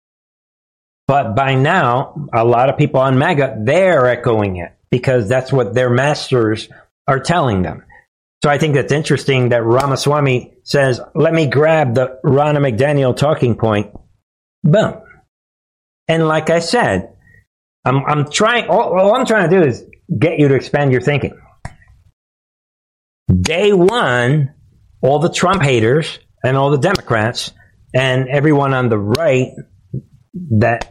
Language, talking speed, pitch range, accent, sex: English, 140 wpm, 115-150 Hz, American, male